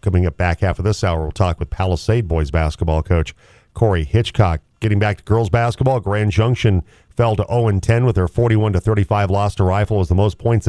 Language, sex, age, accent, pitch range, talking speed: English, male, 40-59, American, 90-115 Hz, 215 wpm